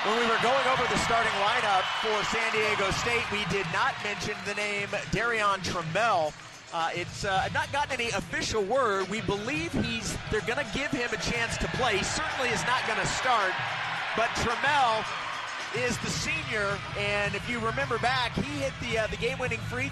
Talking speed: 195 wpm